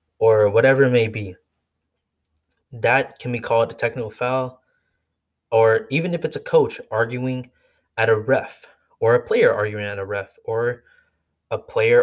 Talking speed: 160 wpm